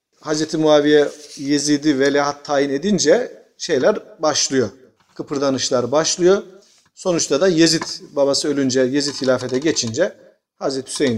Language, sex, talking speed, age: Turkish, male, 105 wpm, 40-59